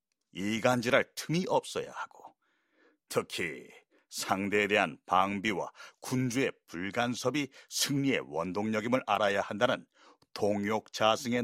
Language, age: Korean, 40-59